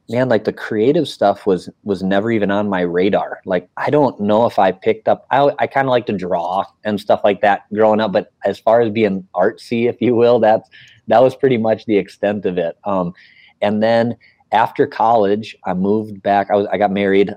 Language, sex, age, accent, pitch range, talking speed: English, male, 30-49, American, 95-110 Hz, 220 wpm